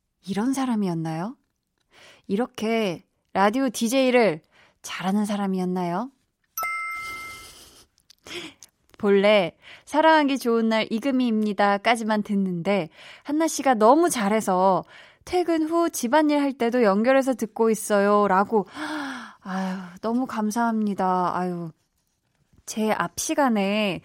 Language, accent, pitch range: Korean, native, 185-260 Hz